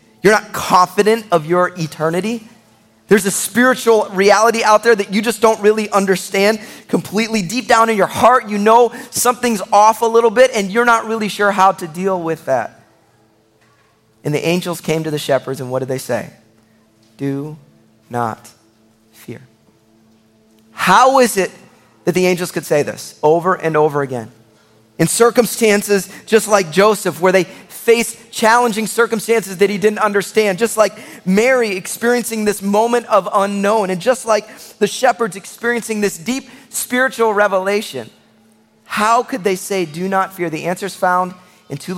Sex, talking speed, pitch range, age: male, 165 wpm, 155-225 Hz, 30-49